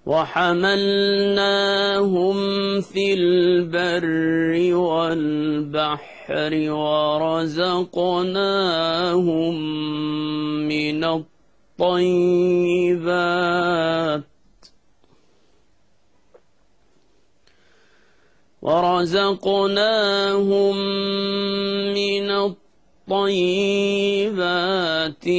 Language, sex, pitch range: English, male, 160-195 Hz